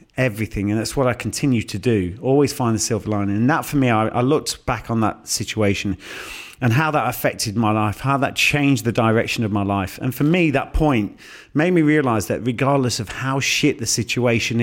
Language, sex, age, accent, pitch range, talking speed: English, male, 40-59, British, 110-140 Hz, 215 wpm